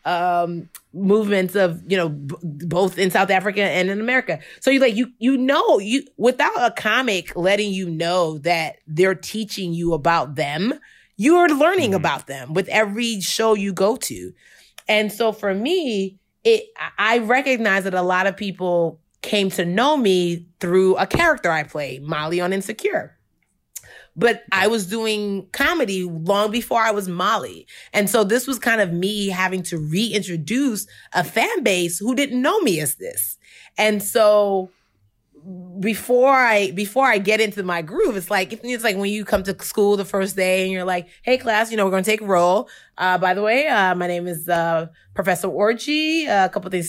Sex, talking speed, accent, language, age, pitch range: female, 185 wpm, American, English, 30-49, 180-230 Hz